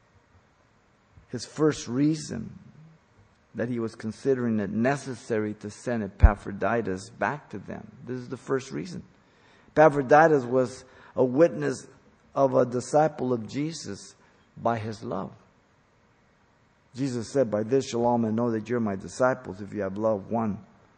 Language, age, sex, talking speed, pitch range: English, 50-69, male, 140 wpm, 110-140 Hz